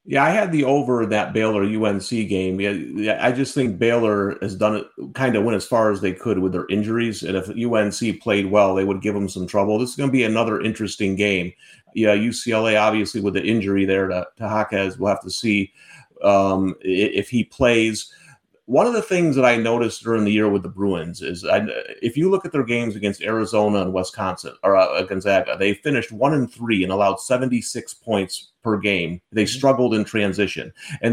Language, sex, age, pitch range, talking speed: English, male, 30-49, 100-125 Hz, 205 wpm